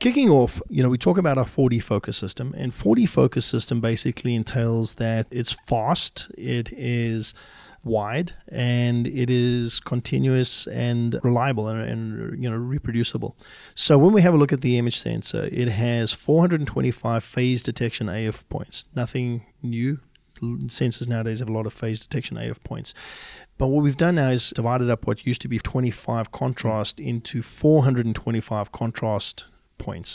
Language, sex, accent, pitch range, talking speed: English, male, Australian, 115-130 Hz, 165 wpm